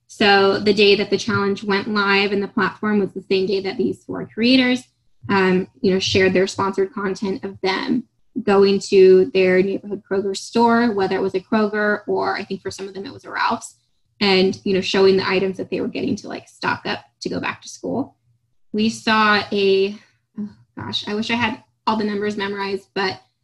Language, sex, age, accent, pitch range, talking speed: English, female, 10-29, American, 190-210 Hz, 210 wpm